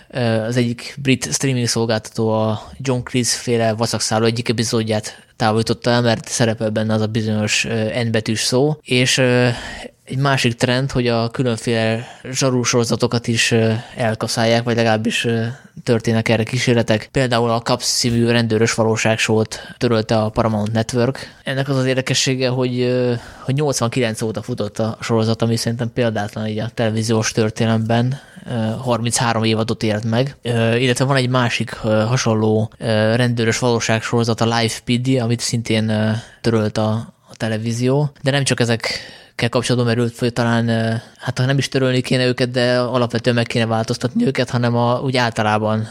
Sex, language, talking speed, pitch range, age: male, Hungarian, 140 wpm, 110-125 Hz, 20-39